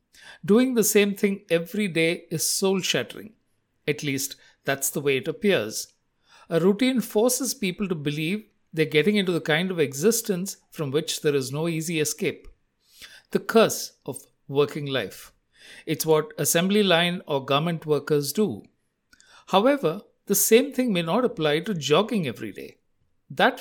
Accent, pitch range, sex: Indian, 155-215 Hz, male